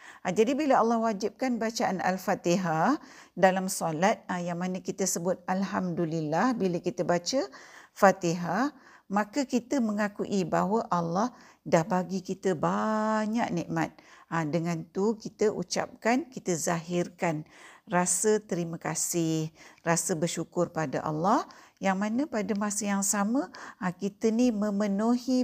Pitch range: 170-215 Hz